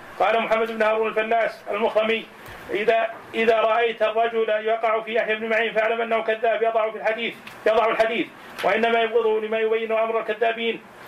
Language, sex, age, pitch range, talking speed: Arabic, male, 40-59, 220-230 Hz, 155 wpm